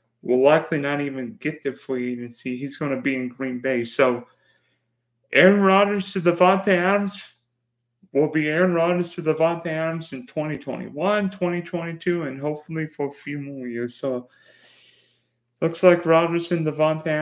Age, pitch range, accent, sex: 30-49, 125-155 Hz, American, male